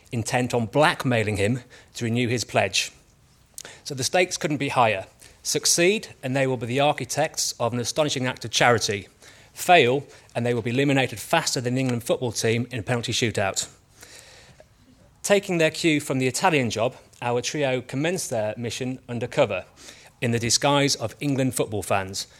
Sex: male